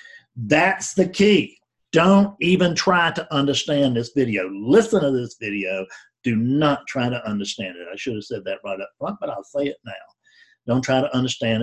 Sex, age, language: male, 50-69, English